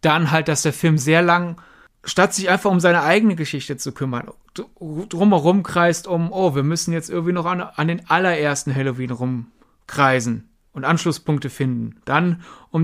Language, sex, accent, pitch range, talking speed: German, male, German, 145-185 Hz, 170 wpm